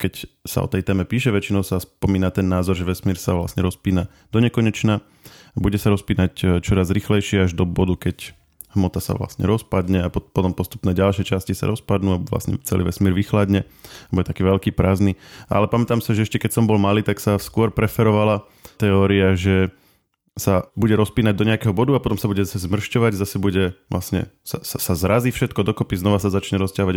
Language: Slovak